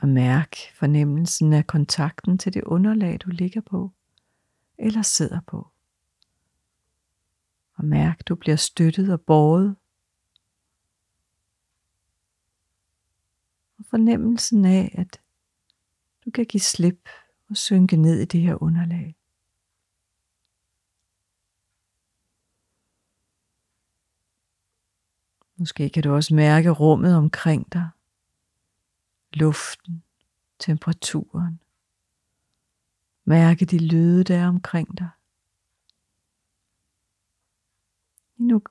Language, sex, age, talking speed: Danish, female, 50-69, 85 wpm